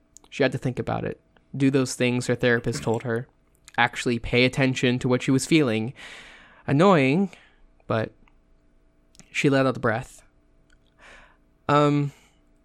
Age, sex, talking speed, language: 20-39, male, 140 wpm, English